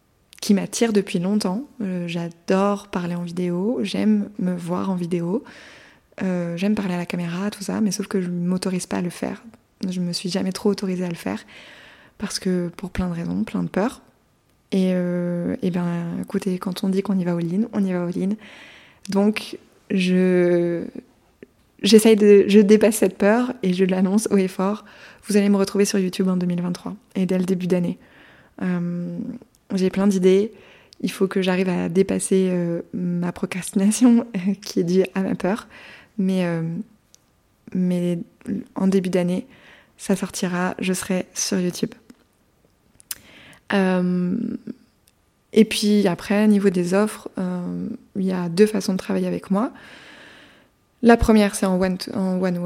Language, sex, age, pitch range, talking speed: French, female, 20-39, 180-210 Hz, 175 wpm